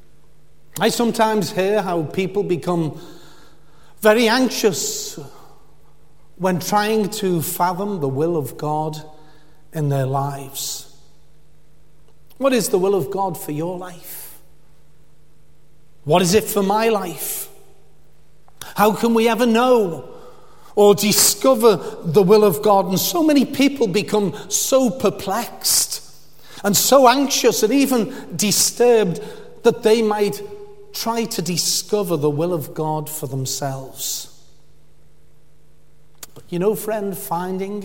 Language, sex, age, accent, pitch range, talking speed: English, male, 40-59, British, 155-220 Hz, 120 wpm